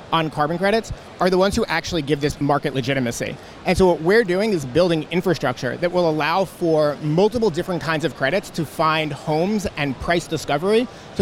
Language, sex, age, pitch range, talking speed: English, male, 30-49, 155-190 Hz, 195 wpm